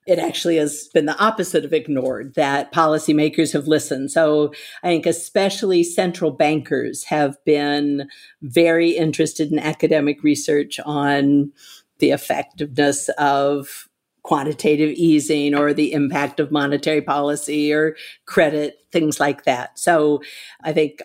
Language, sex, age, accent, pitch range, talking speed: English, female, 50-69, American, 145-165 Hz, 130 wpm